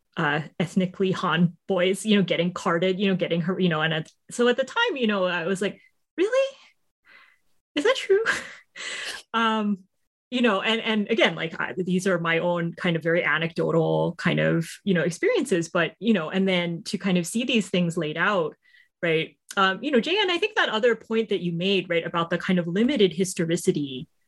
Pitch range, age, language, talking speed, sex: 165-205 Hz, 30-49, English, 205 wpm, female